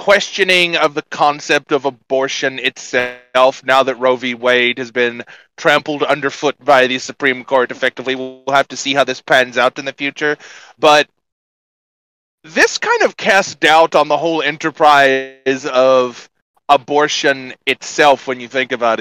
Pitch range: 135-180 Hz